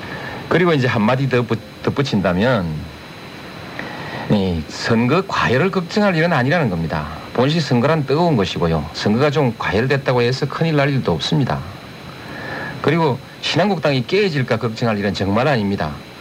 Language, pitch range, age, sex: Korean, 105-150 Hz, 50-69, male